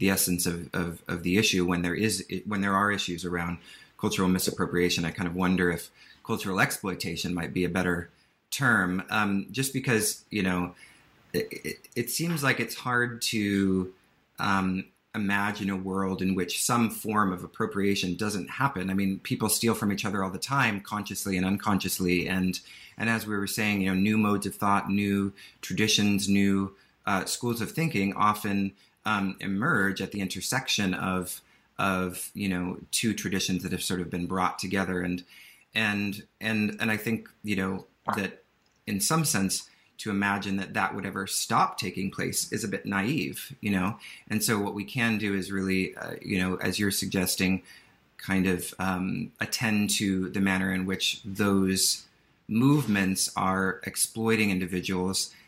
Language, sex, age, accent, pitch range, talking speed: English, male, 30-49, American, 95-105 Hz, 175 wpm